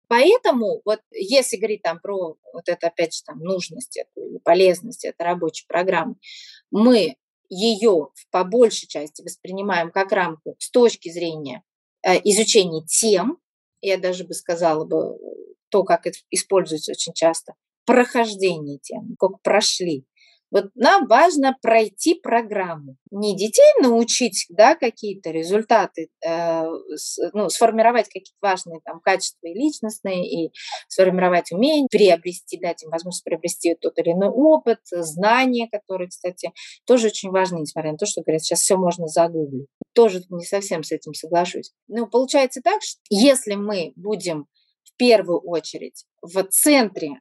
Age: 20-39